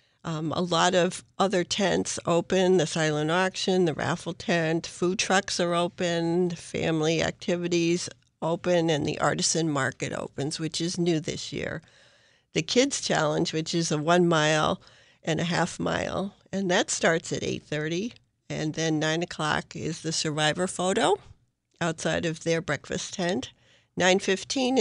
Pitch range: 155-180 Hz